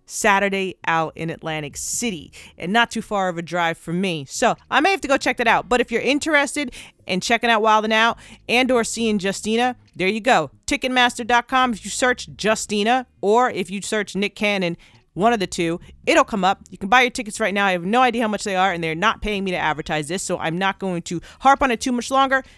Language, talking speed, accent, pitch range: English, 240 wpm, American, 170-230 Hz